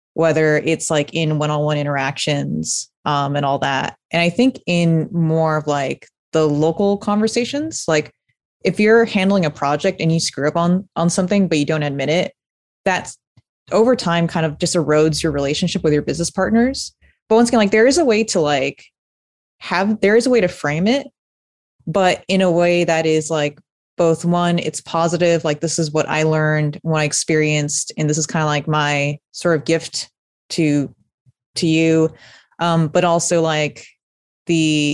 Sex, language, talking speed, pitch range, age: female, English, 185 wpm, 150-180 Hz, 20-39